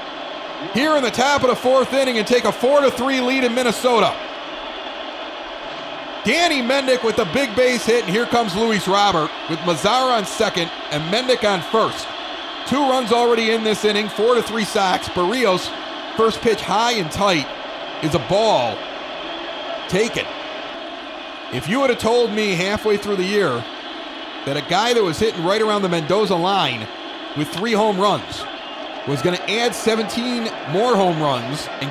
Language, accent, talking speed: English, American, 170 wpm